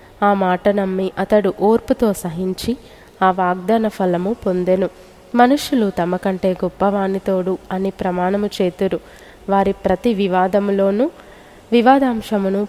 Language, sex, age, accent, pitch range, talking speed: Telugu, female, 20-39, native, 185-220 Hz, 95 wpm